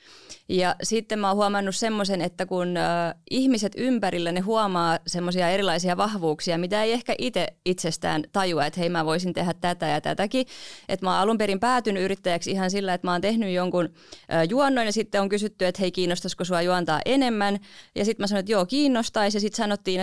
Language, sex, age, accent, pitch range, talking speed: Finnish, female, 20-39, native, 175-200 Hz, 200 wpm